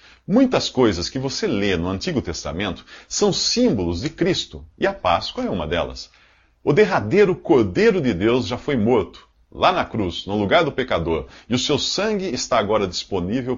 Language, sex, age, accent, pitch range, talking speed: Portuguese, male, 50-69, Brazilian, 80-125 Hz, 175 wpm